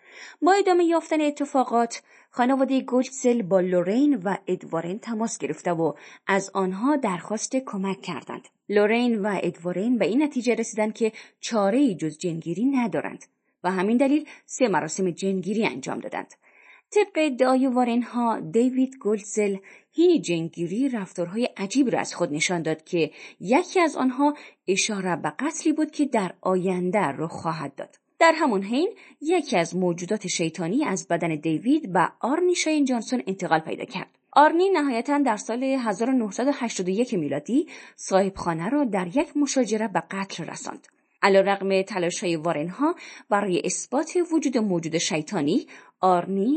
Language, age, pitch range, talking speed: Persian, 30-49, 180-275 Hz, 140 wpm